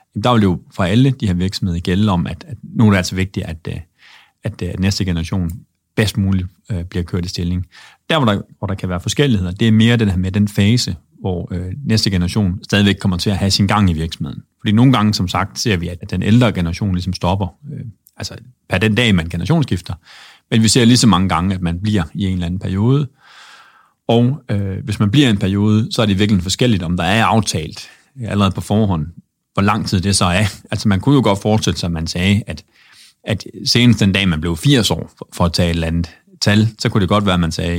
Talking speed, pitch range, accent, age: 245 wpm, 90-110 Hz, native, 30-49